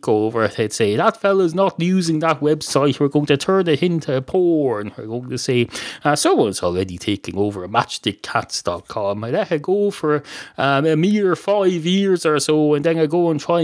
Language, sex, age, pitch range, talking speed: English, male, 30-49, 115-175 Hz, 200 wpm